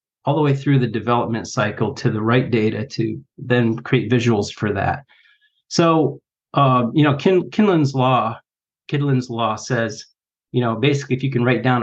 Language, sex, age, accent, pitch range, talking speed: English, male, 40-59, American, 115-145 Hz, 165 wpm